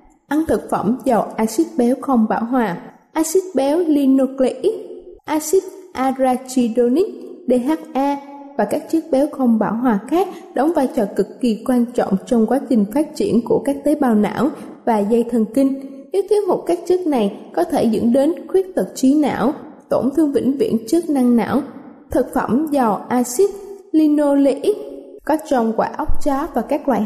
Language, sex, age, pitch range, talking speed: Vietnamese, female, 10-29, 240-305 Hz, 175 wpm